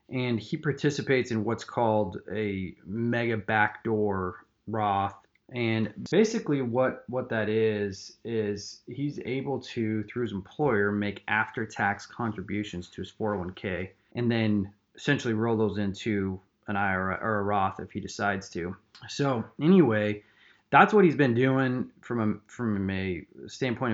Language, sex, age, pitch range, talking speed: English, male, 30-49, 105-125 Hz, 140 wpm